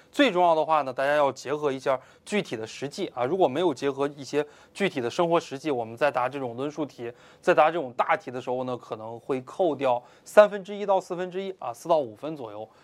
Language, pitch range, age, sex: Chinese, 130-170 Hz, 20-39, male